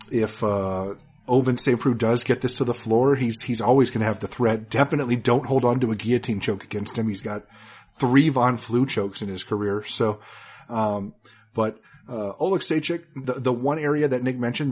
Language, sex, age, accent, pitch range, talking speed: English, male, 30-49, American, 105-130 Hz, 205 wpm